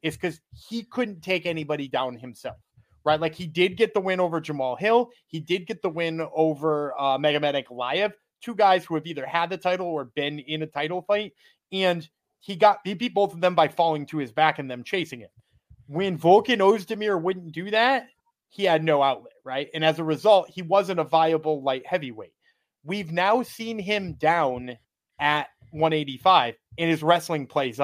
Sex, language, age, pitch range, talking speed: male, English, 30-49, 145-190 Hz, 195 wpm